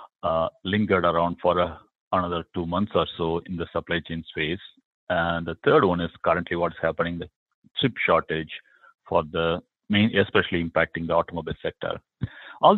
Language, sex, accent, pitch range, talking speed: English, male, Indian, 80-90 Hz, 165 wpm